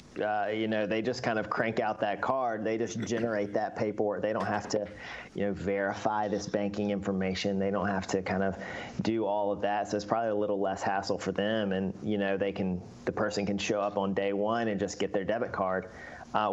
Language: English